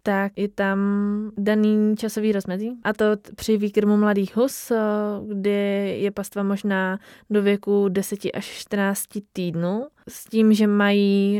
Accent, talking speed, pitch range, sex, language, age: native, 135 wpm, 185-210 Hz, female, Czech, 20-39